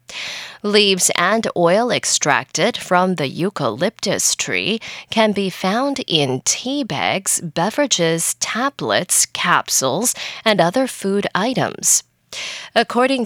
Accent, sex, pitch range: American, female, 165-240 Hz